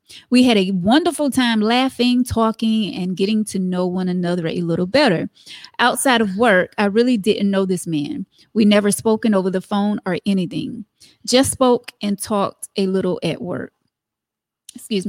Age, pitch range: 20-39, 190-235 Hz